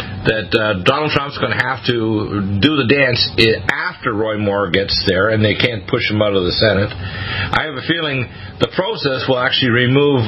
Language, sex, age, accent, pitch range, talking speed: English, male, 50-69, American, 100-125 Hz, 200 wpm